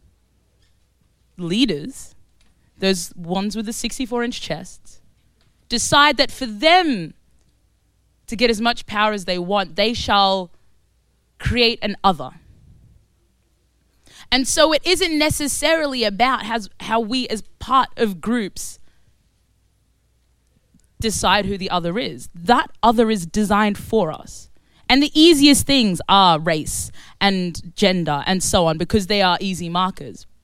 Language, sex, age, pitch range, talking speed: English, female, 20-39, 165-230 Hz, 125 wpm